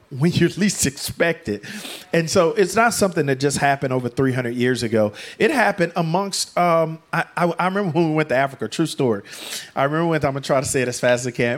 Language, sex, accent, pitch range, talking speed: English, male, American, 145-225 Hz, 240 wpm